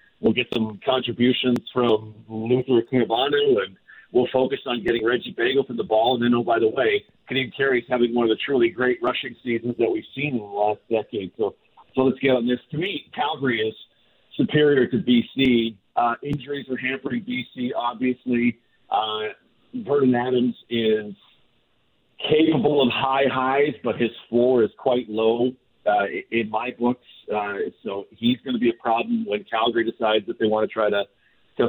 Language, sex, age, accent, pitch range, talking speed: English, male, 50-69, American, 110-130 Hz, 180 wpm